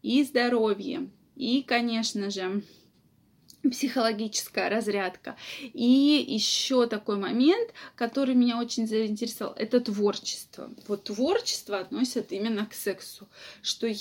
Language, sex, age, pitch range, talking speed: Russian, female, 20-39, 210-280 Hz, 105 wpm